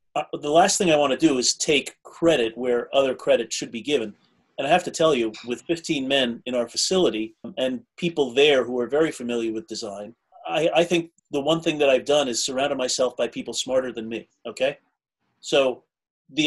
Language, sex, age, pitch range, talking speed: English, male, 30-49, 125-150 Hz, 210 wpm